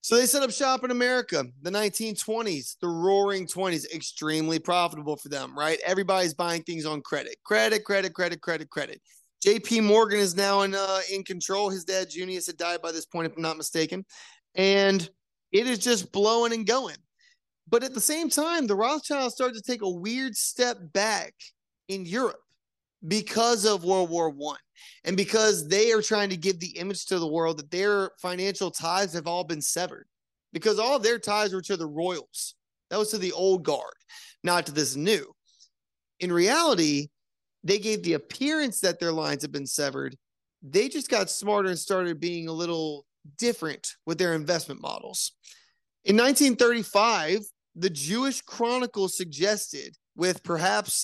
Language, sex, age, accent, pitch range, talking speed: English, male, 30-49, American, 170-225 Hz, 175 wpm